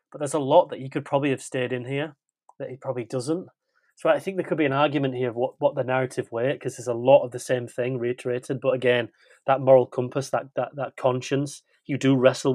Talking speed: 250 wpm